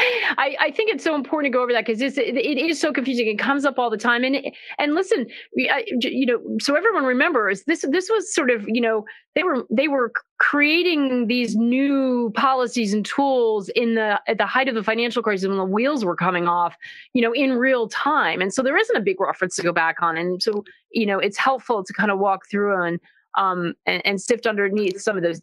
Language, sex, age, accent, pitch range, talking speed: English, female, 30-49, American, 195-255 Hz, 230 wpm